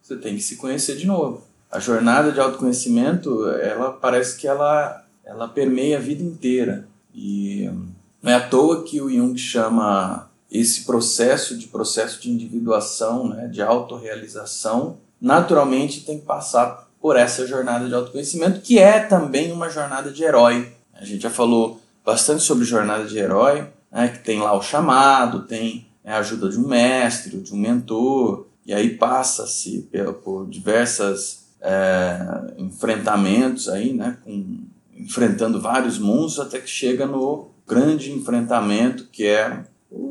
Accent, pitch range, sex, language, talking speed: Brazilian, 115-160 Hz, male, Portuguese, 150 wpm